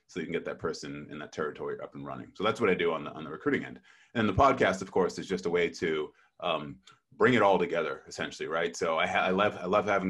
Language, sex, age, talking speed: English, male, 30-49, 285 wpm